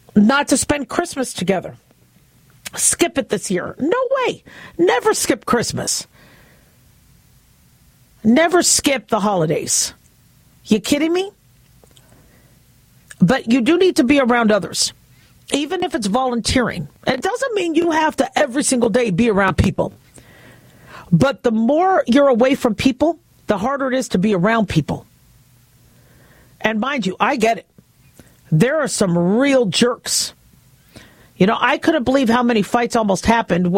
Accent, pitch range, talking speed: American, 215-290 Hz, 145 wpm